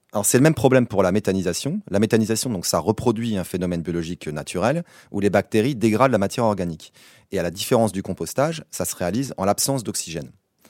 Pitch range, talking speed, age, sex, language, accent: 95-135 Hz, 200 wpm, 30-49, male, French, French